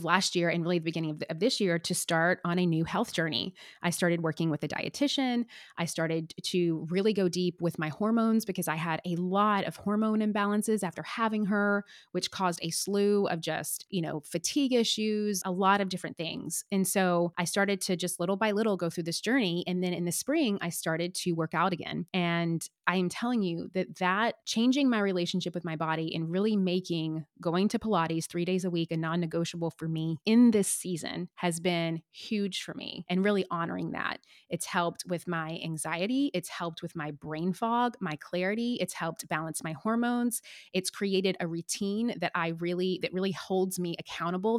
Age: 20-39